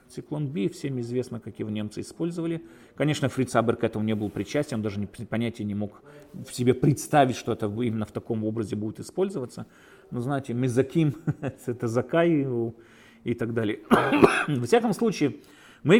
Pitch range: 115-160 Hz